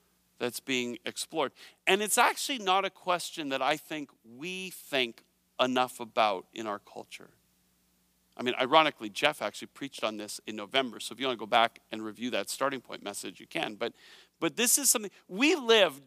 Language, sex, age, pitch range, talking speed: English, male, 50-69, 145-205 Hz, 190 wpm